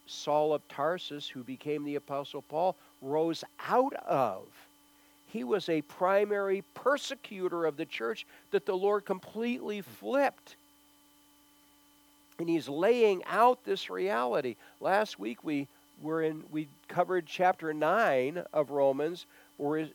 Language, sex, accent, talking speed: English, male, American, 125 wpm